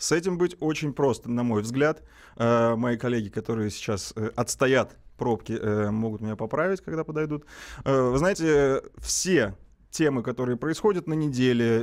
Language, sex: Russian, male